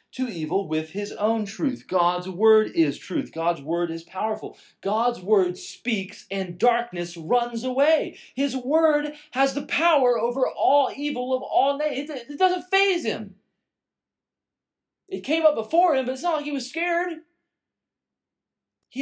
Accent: American